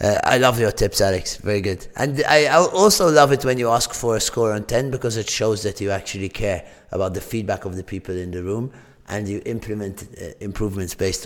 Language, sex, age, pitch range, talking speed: English, male, 30-49, 100-130 Hz, 235 wpm